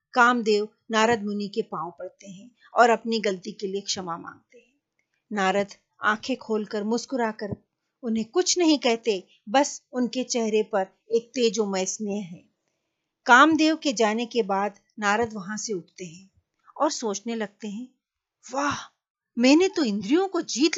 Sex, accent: female, native